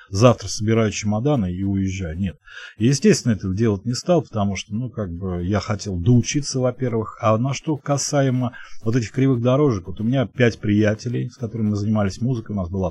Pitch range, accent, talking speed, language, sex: 95-125 Hz, native, 190 wpm, Russian, male